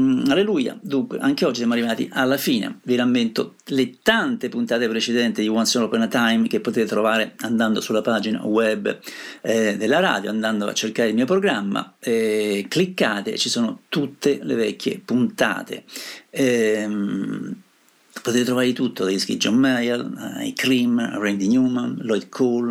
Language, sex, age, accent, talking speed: Italian, male, 50-69, native, 155 wpm